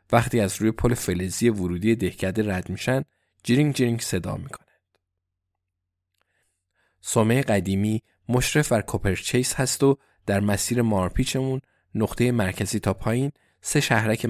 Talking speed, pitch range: 120 wpm, 100-125 Hz